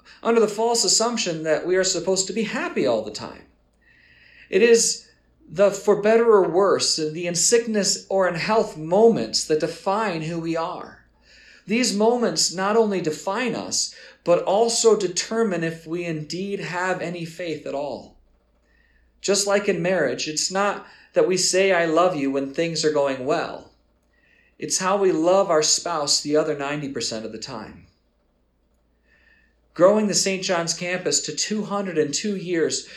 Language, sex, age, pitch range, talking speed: English, male, 40-59, 160-205 Hz, 160 wpm